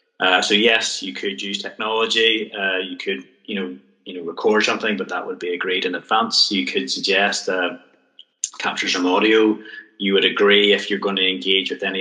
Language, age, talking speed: English, 20-39, 200 wpm